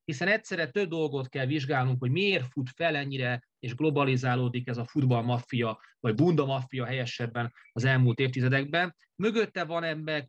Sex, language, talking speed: male, Hungarian, 150 wpm